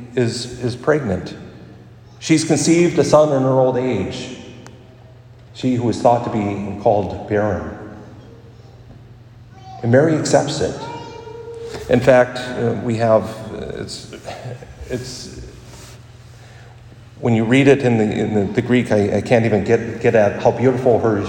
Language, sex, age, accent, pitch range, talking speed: English, male, 40-59, American, 110-130 Hz, 145 wpm